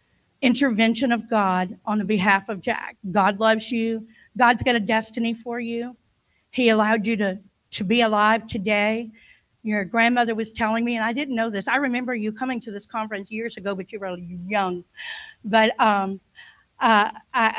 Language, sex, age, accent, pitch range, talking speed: English, female, 50-69, American, 210-240 Hz, 175 wpm